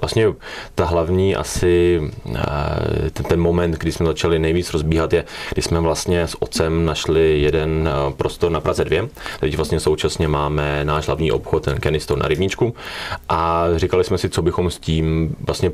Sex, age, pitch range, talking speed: male, 30-49, 75-85 Hz, 170 wpm